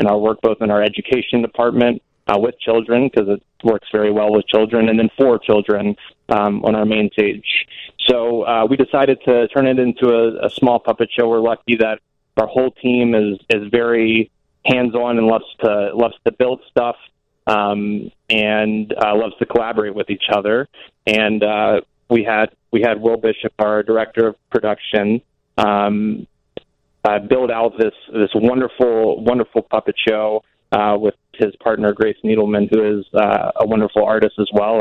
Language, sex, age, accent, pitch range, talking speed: English, male, 30-49, American, 110-120 Hz, 180 wpm